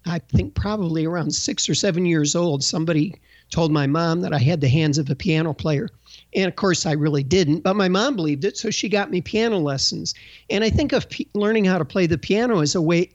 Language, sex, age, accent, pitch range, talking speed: English, male, 50-69, American, 155-205 Hz, 240 wpm